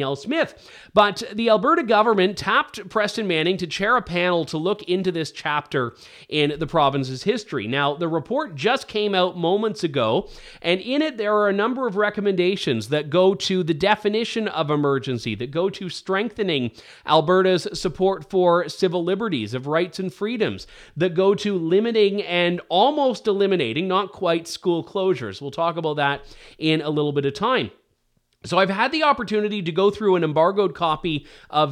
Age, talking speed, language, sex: 30-49, 170 wpm, English, male